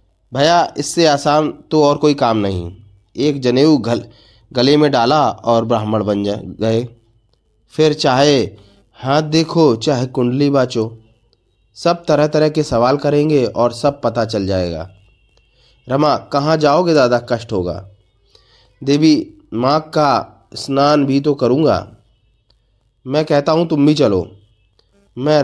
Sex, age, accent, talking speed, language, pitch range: male, 30-49, native, 135 wpm, Hindi, 110-150 Hz